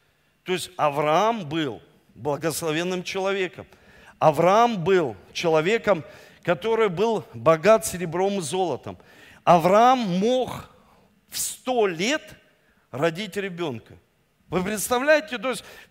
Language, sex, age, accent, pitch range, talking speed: Russian, male, 50-69, native, 205-270 Hz, 100 wpm